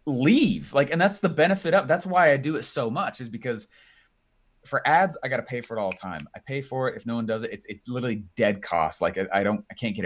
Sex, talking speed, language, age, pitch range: male, 285 wpm, English, 30-49, 105-145 Hz